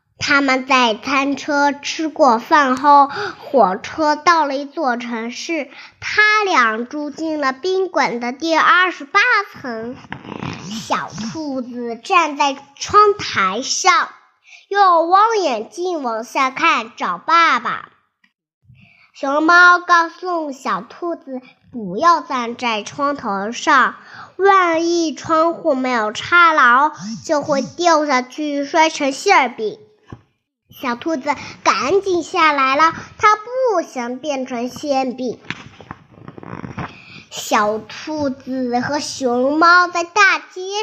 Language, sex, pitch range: Chinese, male, 250-345 Hz